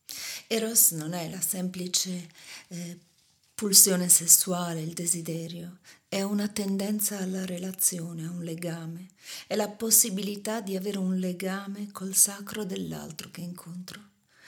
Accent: native